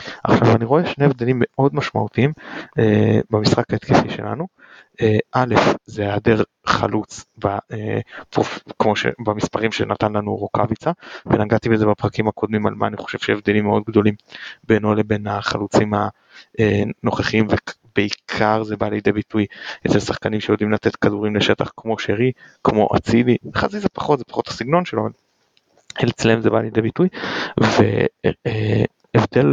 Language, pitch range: Hebrew, 105-130 Hz